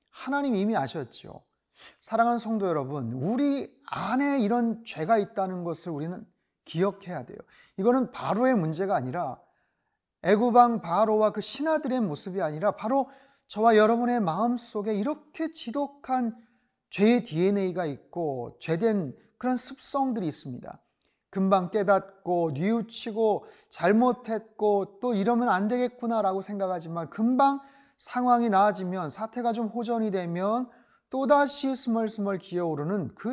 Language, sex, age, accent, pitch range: Korean, male, 30-49, native, 185-235 Hz